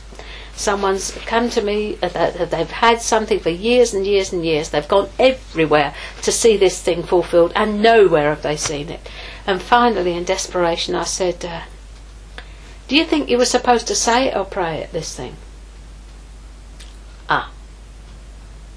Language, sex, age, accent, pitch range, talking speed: English, female, 60-79, British, 170-225 Hz, 165 wpm